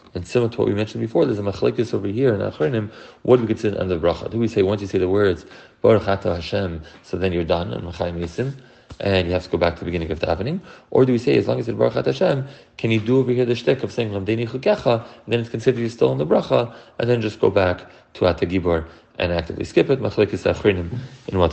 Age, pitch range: 30-49, 90-115 Hz